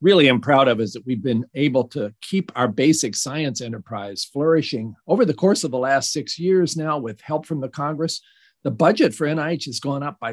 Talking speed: 220 wpm